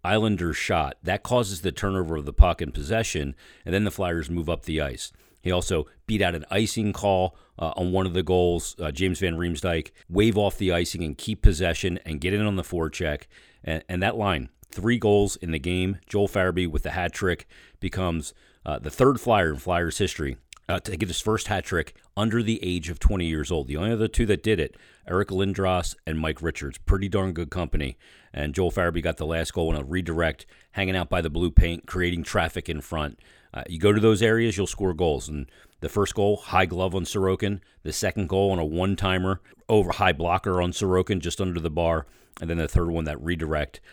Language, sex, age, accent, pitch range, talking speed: English, male, 40-59, American, 80-95 Hz, 220 wpm